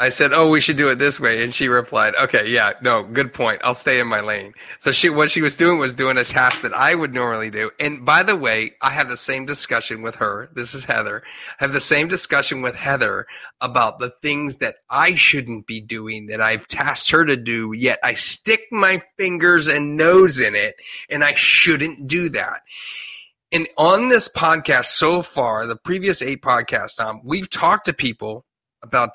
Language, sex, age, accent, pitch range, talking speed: English, male, 30-49, American, 125-165 Hz, 210 wpm